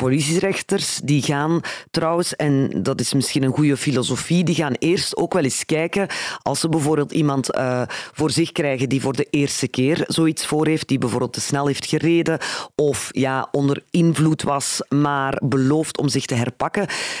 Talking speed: 180 wpm